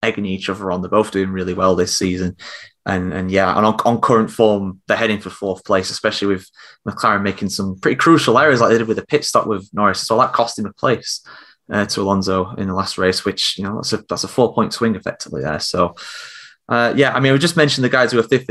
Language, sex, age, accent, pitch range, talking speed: English, male, 20-39, British, 105-130 Hz, 260 wpm